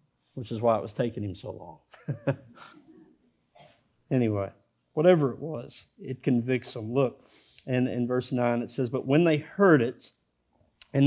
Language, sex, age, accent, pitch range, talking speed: English, male, 40-59, American, 120-155 Hz, 155 wpm